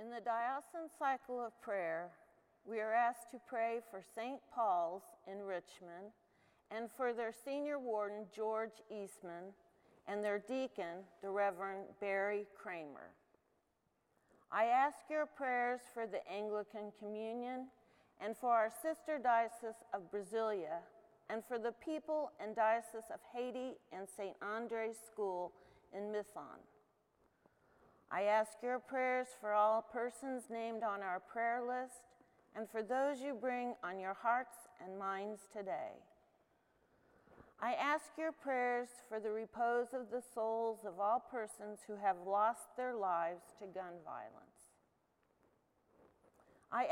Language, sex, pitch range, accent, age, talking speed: English, female, 205-250 Hz, American, 40-59, 135 wpm